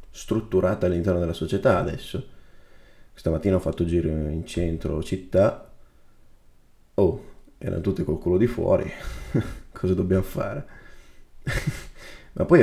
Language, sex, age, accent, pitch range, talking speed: Italian, male, 20-39, native, 85-95 Hz, 115 wpm